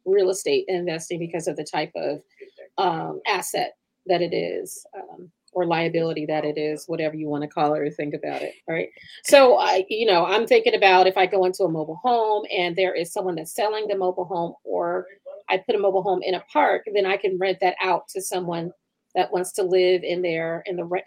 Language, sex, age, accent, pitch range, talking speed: English, female, 30-49, American, 175-210 Hz, 225 wpm